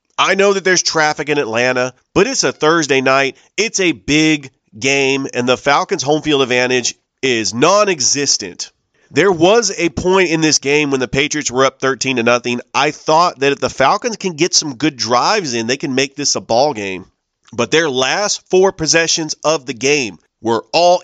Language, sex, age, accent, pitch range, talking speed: English, male, 40-59, American, 125-160 Hz, 195 wpm